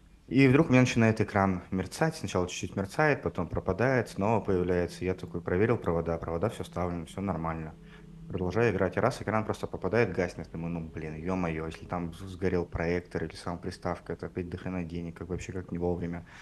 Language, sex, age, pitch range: Russian, male, 20-39, 90-115 Hz